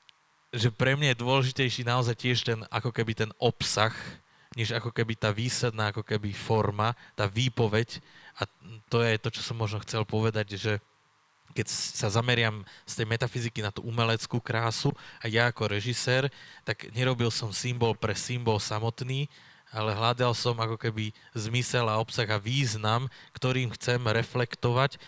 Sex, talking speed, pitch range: male, 160 wpm, 110-125 Hz